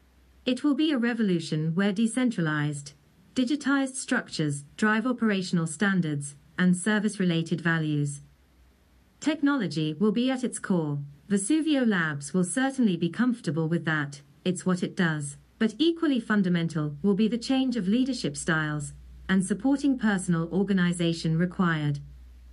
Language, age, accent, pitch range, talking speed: English, 40-59, British, 155-230 Hz, 130 wpm